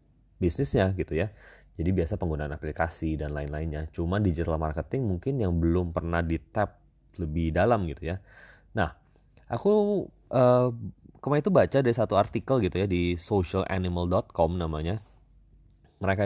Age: 20-39